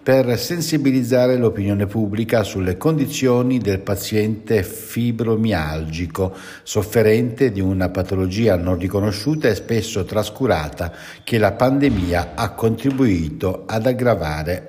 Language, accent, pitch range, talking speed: Italian, native, 95-130 Hz, 100 wpm